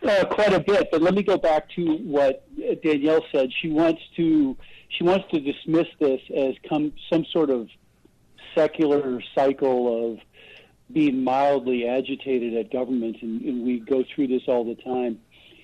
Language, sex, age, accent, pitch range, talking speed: English, male, 50-69, American, 125-160 Hz, 155 wpm